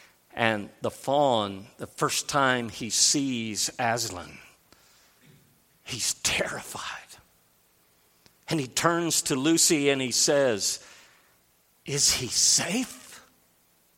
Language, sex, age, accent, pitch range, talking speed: English, male, 50-69, American, 105-150 Hz, 95 wpm